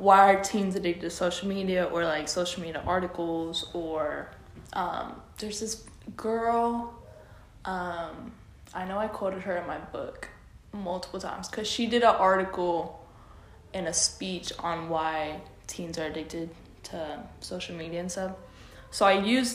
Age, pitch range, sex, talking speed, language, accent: 20-39, 165-200 Hz, female, 150 wpm, English, American